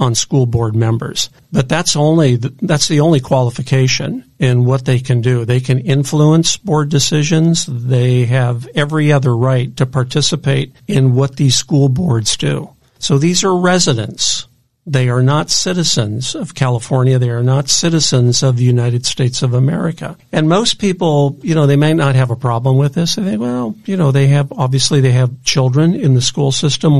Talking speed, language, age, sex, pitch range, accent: 180 wpm, English, 50-69, male, 125-150 Hz, American